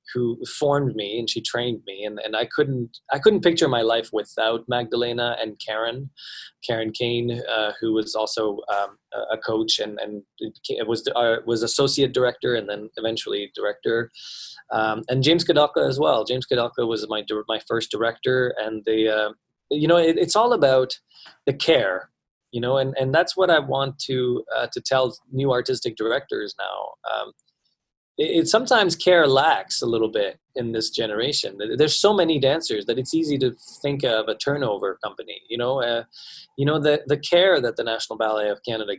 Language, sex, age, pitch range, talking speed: English, male, 20-39, 115-165 Hz, 180 wpm